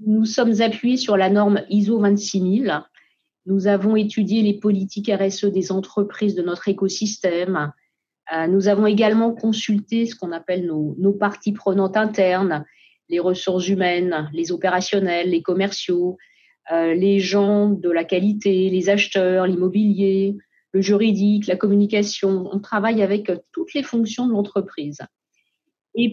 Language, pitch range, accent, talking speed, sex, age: French, 185-210 Hz, French, 135 wpm, female, 40-59